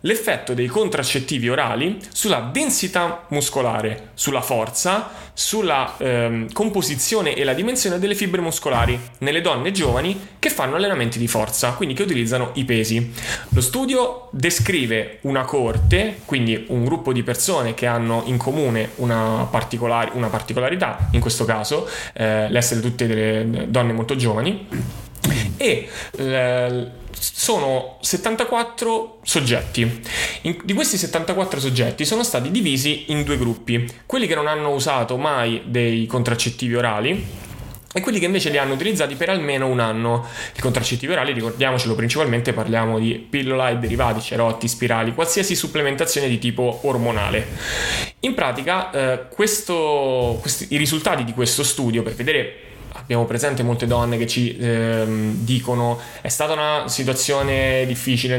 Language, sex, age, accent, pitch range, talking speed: Italian, male, 20-39, native, 115-145 Hz, 135 wpm